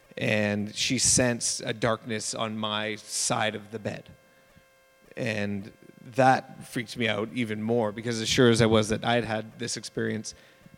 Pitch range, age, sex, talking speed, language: 110-125 Hz, 30-49, male, 165 wpm, English